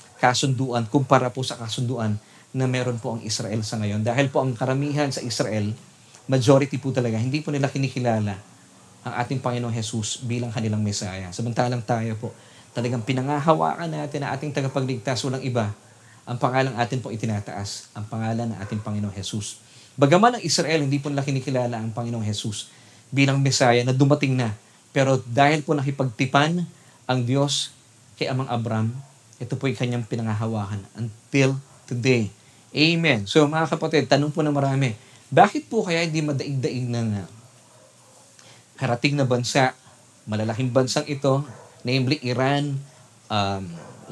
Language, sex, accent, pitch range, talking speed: Filipino, male, native, 115-140 Hz, 145 wpm